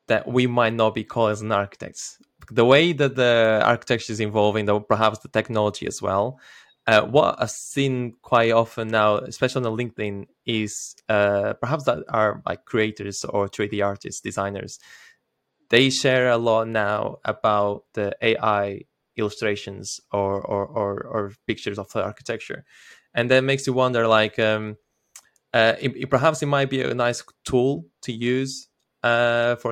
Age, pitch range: 20-39, 105-125 Hz